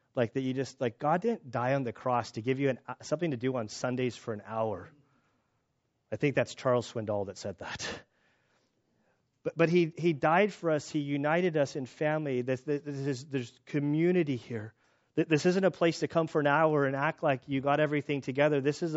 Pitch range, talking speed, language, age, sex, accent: 130-170 Hz, 210 wpm, English, 30-49, male, American